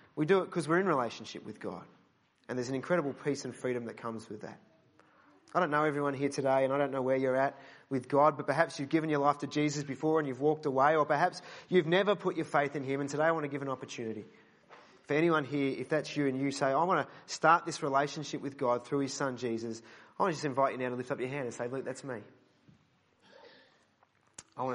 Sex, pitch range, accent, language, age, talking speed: male, 125-150 Hz, Australian, English, 30-49, 255 wpm